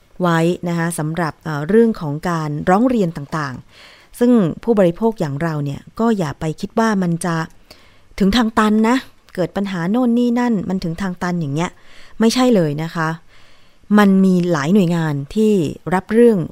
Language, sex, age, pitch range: Thai, female, 20-39, 160-210 Hz